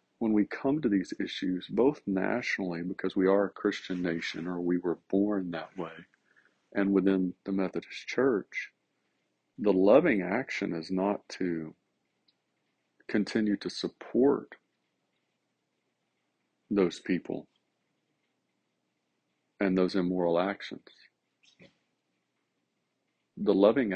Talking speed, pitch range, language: 105 wpm, 85-95 Hz, English